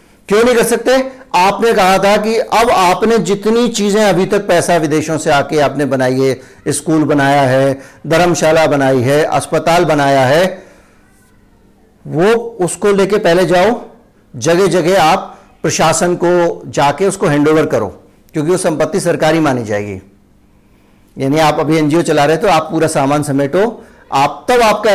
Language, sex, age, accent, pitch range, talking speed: Hindi, male, 50-69, native, 145-195 Hz, 155 wpm